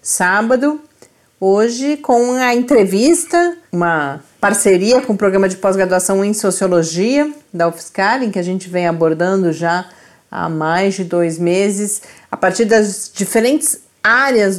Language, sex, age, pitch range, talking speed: Portuguese, female, 40-59, 180-230 Hz, 135 wpm